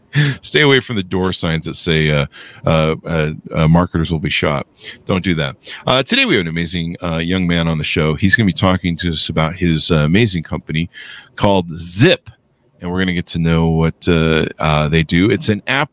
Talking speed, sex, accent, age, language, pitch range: 225 wpm, male, American, 50-69, English, 85-125 Hz